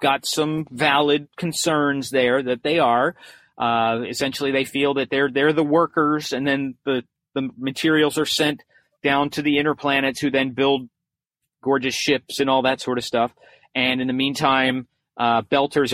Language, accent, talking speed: English, American, 175 wpm